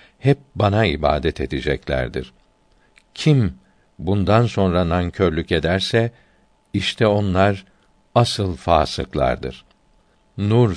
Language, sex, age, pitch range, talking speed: Turkish, male, 60-79, 85-110 Hz, 80 wpm